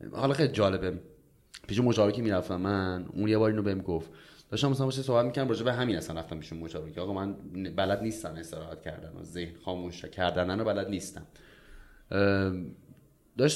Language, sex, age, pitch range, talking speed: Persian, male, 30-49, 90-115 Hz, 170 wpm